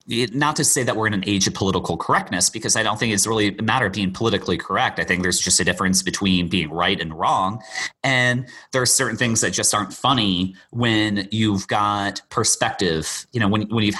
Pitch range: 100-120 Hz